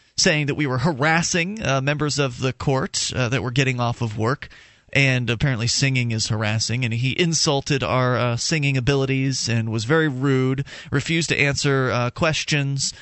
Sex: male